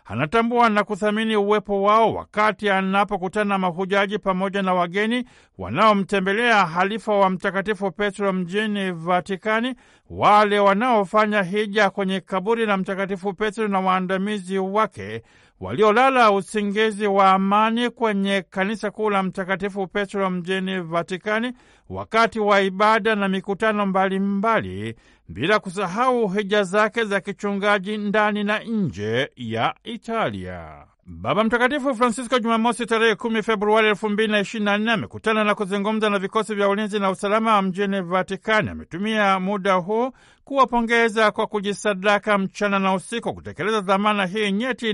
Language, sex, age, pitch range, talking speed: Swahili, male, 60-79, 195-215 Hz, 125 wpm